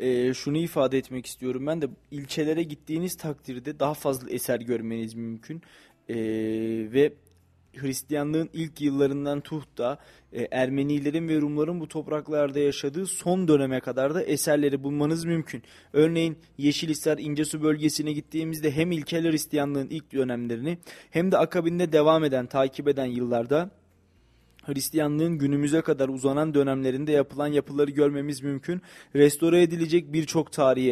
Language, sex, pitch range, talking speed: Turkish, male, 140-155 Hz, 130 wpm